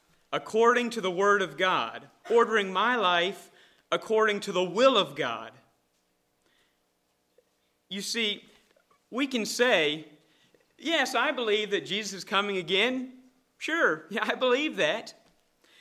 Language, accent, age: English, American, 40-59